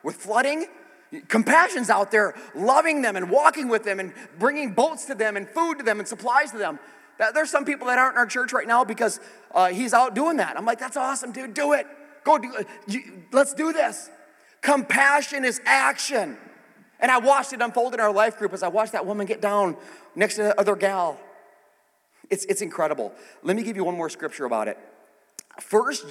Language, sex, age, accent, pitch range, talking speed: English, male, 30-49, American, 205-290 Hz, 205 wpm